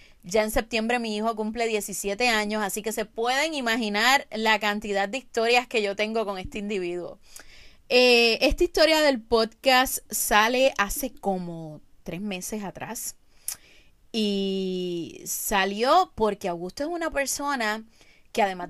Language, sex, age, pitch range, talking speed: Spanish, female, 30-49, 195-260 Hz, 140 wpm